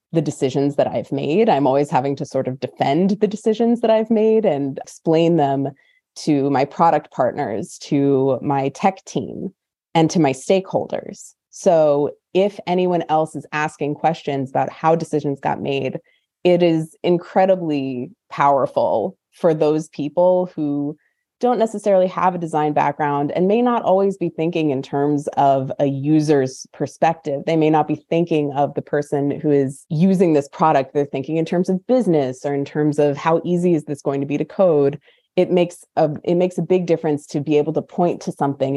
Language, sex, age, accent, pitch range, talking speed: English, female, 20-39, American, 140-175 Hz, 180 wpm